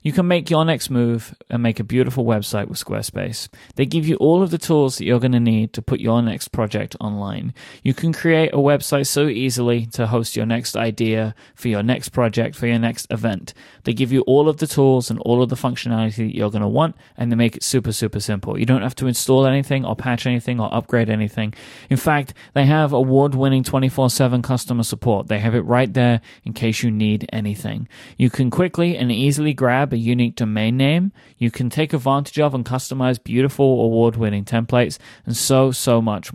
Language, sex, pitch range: English, male, 110-135 Hz